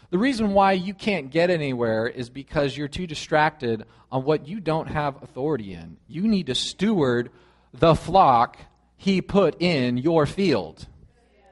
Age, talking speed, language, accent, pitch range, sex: 40-59, 155 wpm, English, American, 110-165 Hz, male